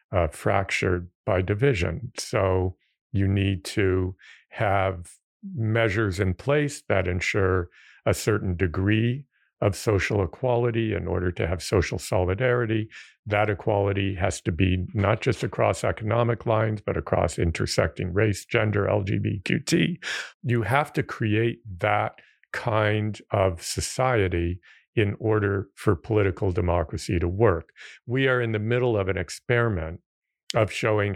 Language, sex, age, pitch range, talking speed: English, male, 50-69, 95-115 Hz, 130 wpm